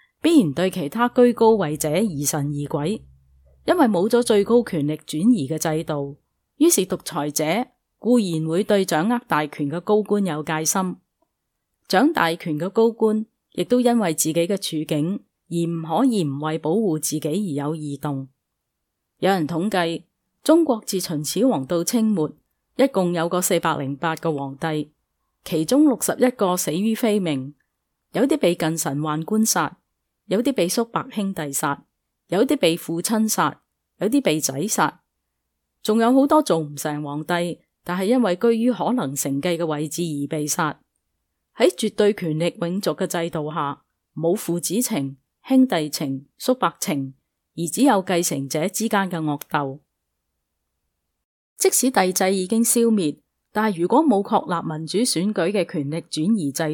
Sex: female